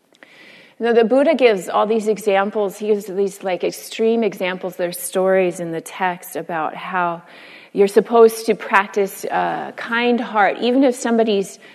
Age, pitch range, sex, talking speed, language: 30-49, 180-225 Hz, female, 155 wpm, English